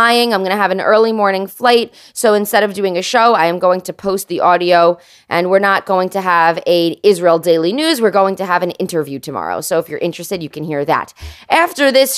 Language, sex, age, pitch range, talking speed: English, female, 20-39, 170-225 Hz, 235 wpm